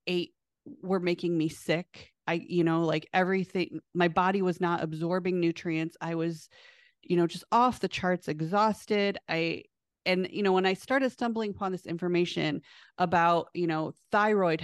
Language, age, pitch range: English, 30-49, 170-195 Hz